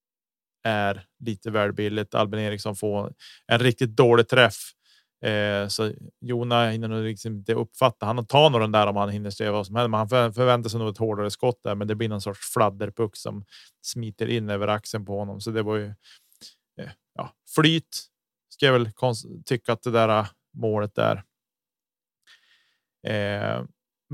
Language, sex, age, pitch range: Swedish, male, 30-49, 105-120 Hz